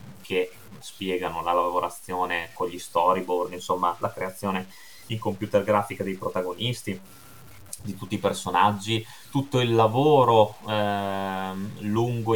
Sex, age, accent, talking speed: male, 20-39, native, 115 wpm